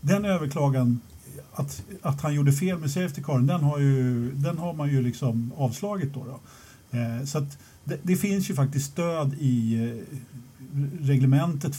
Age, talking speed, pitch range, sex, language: 50-69, 160 wpm, 120-155 Hz, male, Swedish